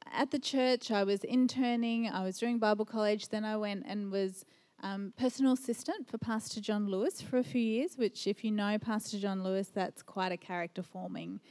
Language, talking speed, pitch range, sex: English, 200 wpm, 195-240 Hz, female